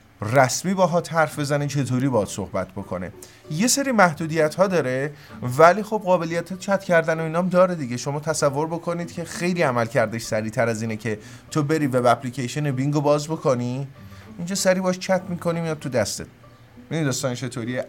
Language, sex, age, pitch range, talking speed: Persian, male, 30-49, 120-165 Hz, 170 wpm